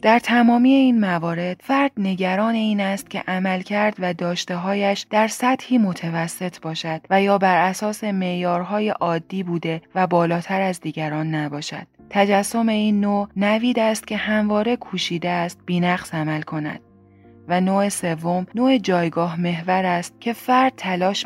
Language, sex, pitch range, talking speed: Persian, female, 170-200 Hz, 145 wpm